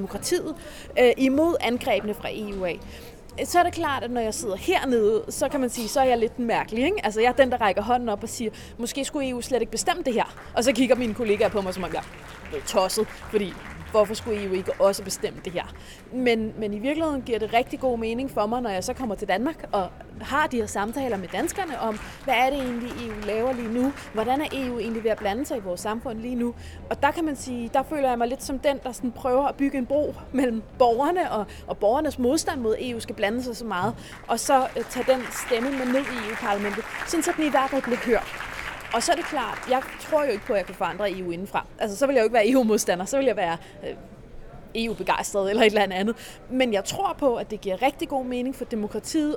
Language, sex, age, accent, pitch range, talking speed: Danish, female, 20-39, native, 215-270 Hz, 245 wpm